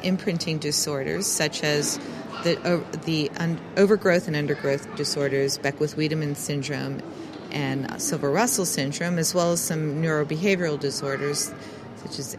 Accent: American